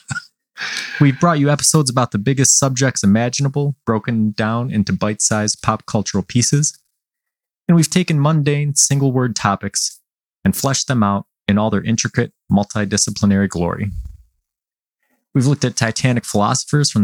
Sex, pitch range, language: male, 100-145 Hz, English